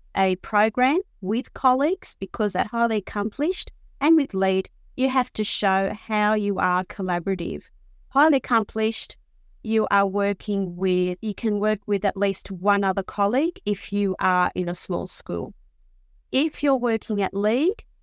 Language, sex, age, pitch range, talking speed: English, female, 30-49, 195-235 Hz, 155 wpm